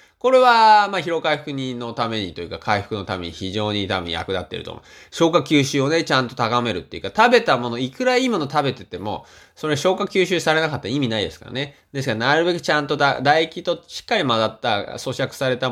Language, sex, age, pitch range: Japanese, male, 20-39, 110-165 Hz